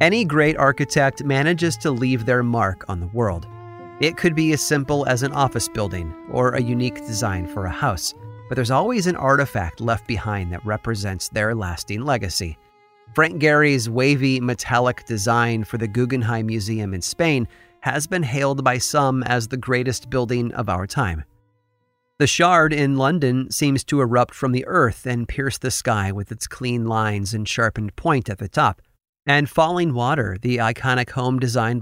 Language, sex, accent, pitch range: English, male, American, 110-140 Hz